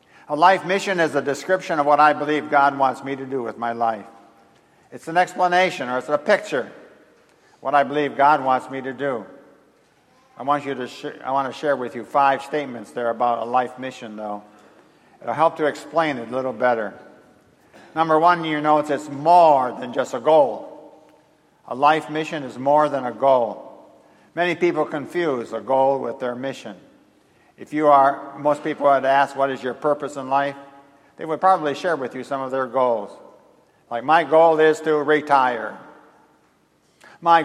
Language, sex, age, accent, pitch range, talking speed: English, male, 60-79, American, 130-155 Hz, 190 wpm